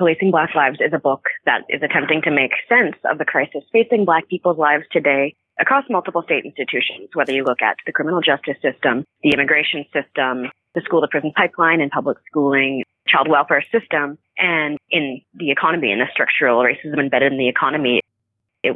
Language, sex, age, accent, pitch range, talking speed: English, female, 30-49, American, 145-180 Hz, 180 wpm